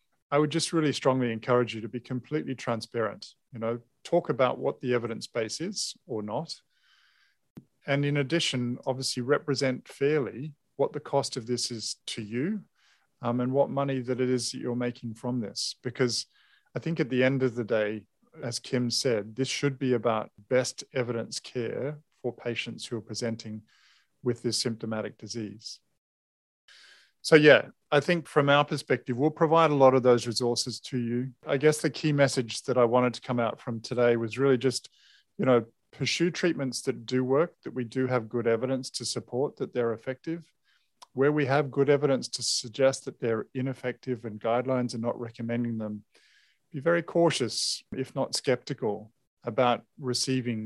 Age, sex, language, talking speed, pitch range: 40-59, male, English, 180 wpm, 120-140 Hz